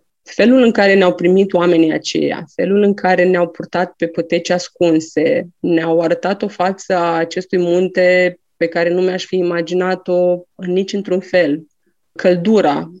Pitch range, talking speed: 175-195 Hz, 150 wpm